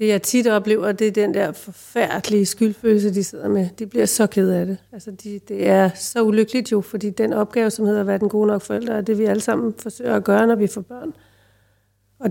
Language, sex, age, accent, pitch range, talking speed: English, female, 40-59, Danish, 195-225 Hz, 245 wpm